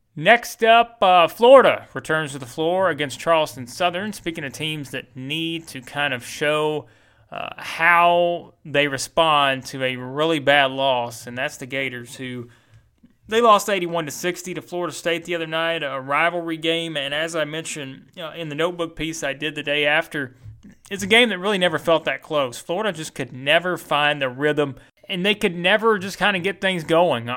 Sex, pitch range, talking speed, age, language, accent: male, 135-175 Hz, 195 wpm, 30-49, English, American